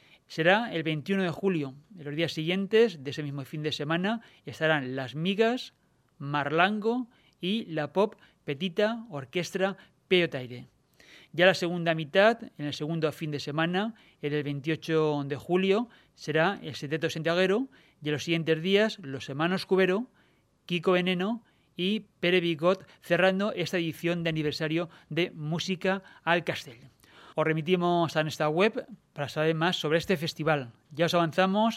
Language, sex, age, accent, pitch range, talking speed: Spanish, male, 30-49, Spanish, 155-185 Hz, 150 wpm